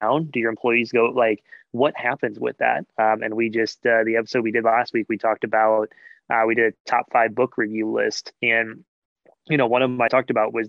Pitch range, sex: 110-125 Hz, male